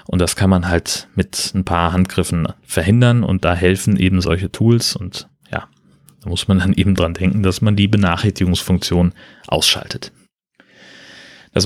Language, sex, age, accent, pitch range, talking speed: German, male, 30-49, German, 95-115 Hz, 160 wpm